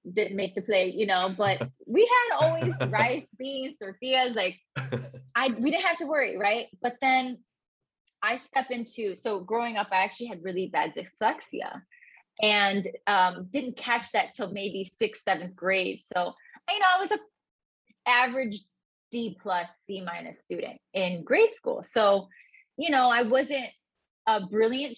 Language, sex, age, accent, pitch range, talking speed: English, female, 20-39, American, 195-255 Hz, 160 wpm